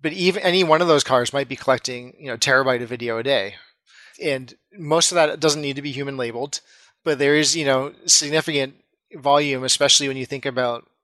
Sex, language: male, English